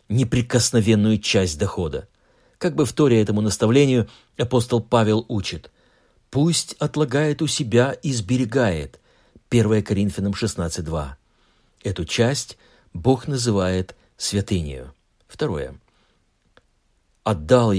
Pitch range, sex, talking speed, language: 95-125 Hz, male, 95 wpm, Russian